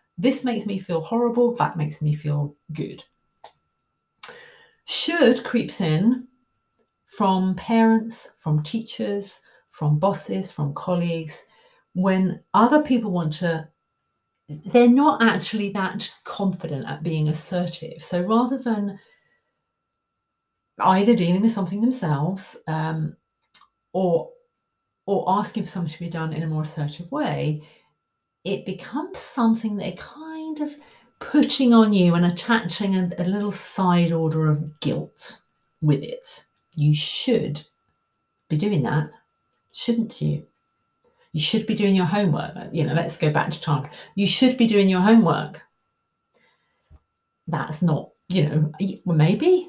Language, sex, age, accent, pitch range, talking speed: English, female, 40-59, British, 155-225 Hz, 130 wpm